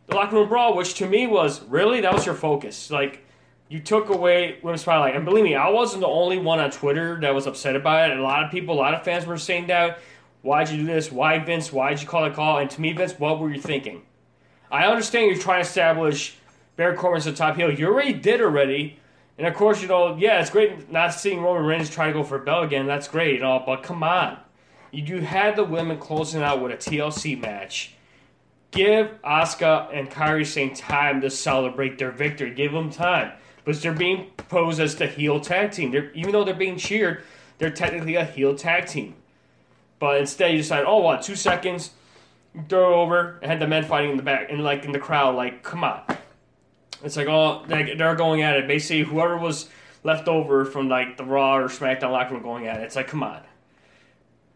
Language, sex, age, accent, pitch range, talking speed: English, male, 20-39, American, 140-175 Hz, 225 wpm